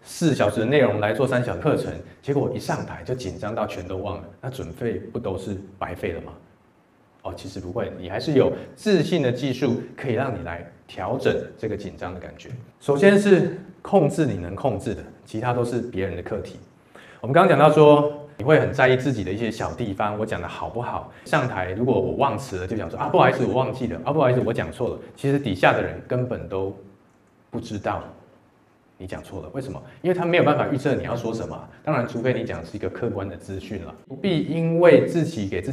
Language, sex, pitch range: Chinese, male, 95-130 Hz